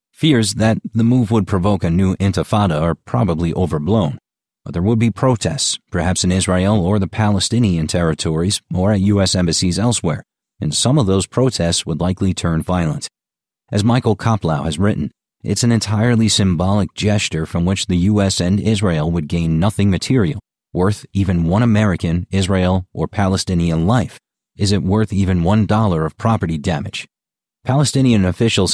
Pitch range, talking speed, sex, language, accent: 85-110 Hz, 160 wpm, male, English, American